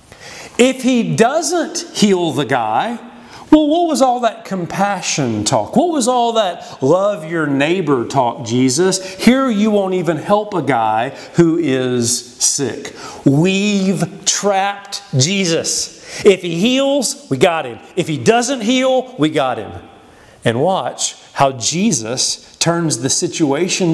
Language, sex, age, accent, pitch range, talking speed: English, male, 40-59, American, 155-245 Hz, 140 wpm